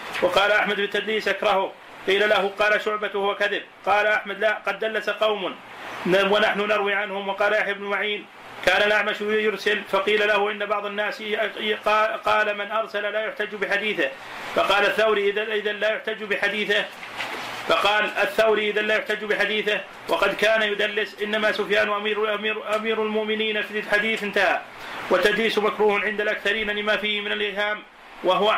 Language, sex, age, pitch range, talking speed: Arabic, male, 40-59, 205-215 Hz, 145 wpm